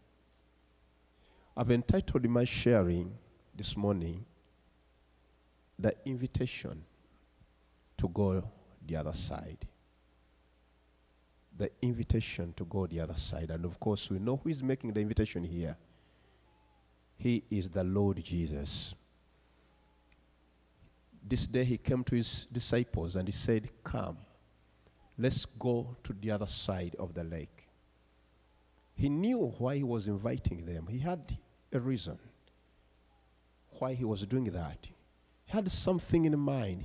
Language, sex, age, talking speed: English, male, 50-69, 125 wpm